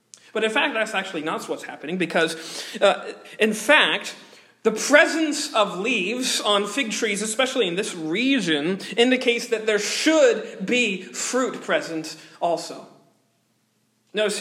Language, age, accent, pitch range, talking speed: English, 40-59, American, 180-235 Hz, 135 wpm